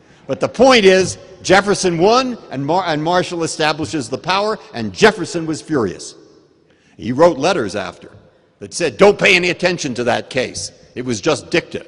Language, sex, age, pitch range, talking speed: English, male, 60-79, 110-160 Hz, 165 wpm